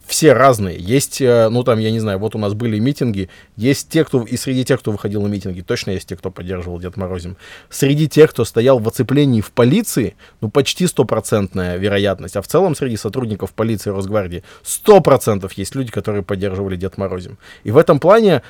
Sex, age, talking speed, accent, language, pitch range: male, 20-39, 200 wpm, native, Russian, 105-140 Hz